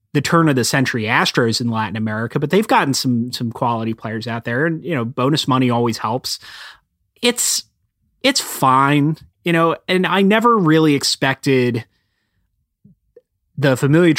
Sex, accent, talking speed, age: male, American, 155 wpm, 30-49